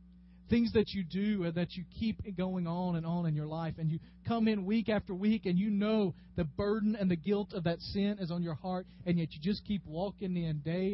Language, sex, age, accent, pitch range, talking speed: English, male, 40-59, American, 160-230 Hz, 240 wpm